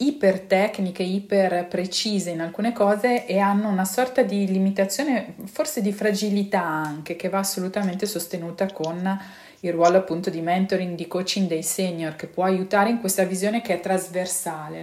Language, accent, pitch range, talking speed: Italian, native, 170-195 Hz, 160 wpm